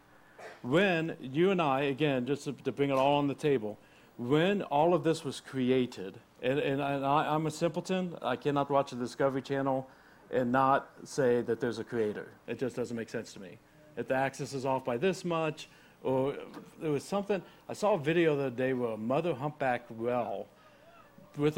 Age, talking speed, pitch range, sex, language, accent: 60-79, 195 wpm, 125-160 Hz, male, English, American